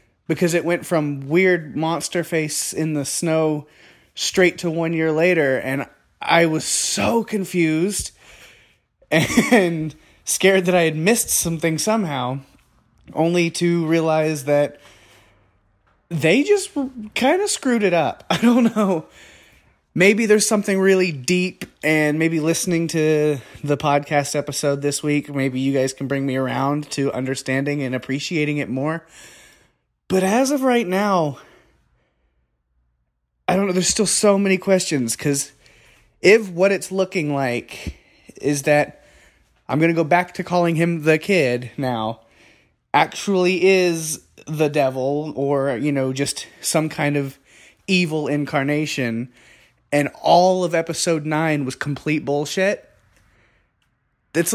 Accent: American